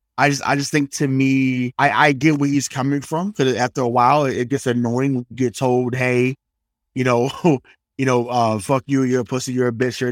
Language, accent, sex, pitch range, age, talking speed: English, American, male, 125-150 Hz, 20-39, 230 wpm